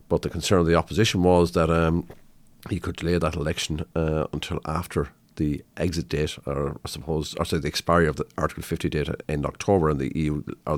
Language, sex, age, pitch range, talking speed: English, male, 50-69, 75-90 Hz, 210 wpm